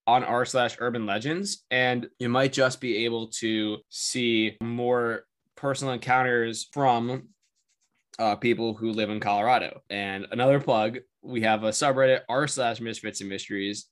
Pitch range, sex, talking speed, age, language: 110-130 Hz, male, 150 wpm, 10-29, English